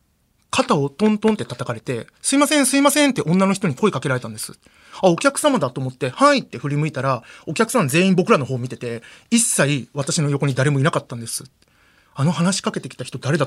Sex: male